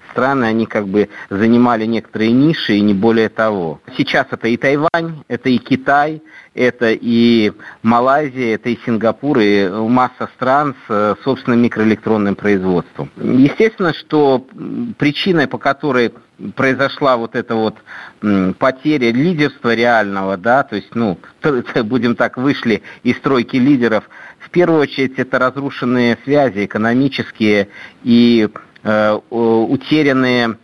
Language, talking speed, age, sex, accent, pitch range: Russian, 120 wpm, 50-69, male, native, 110-135 Hz